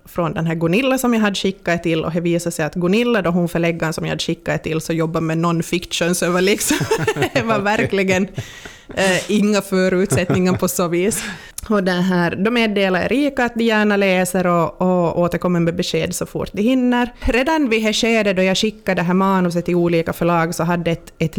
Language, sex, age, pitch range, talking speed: Swedish, female, 20-39, 165-205 Hz, 200 wpm